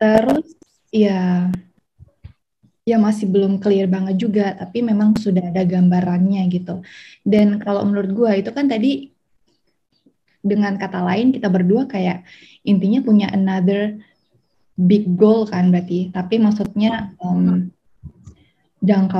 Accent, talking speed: native, 115 wpm